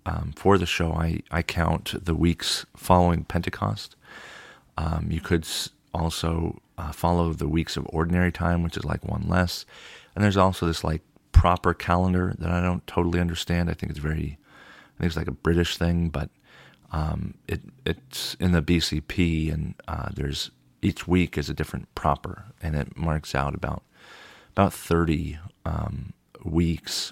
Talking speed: 165 wpm